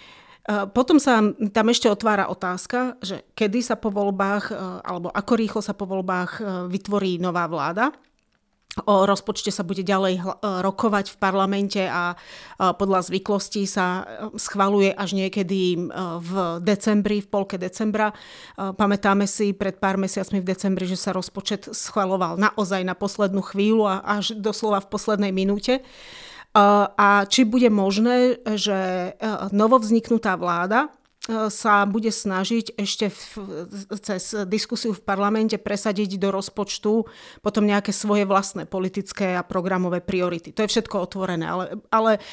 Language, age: Slovak, 40-59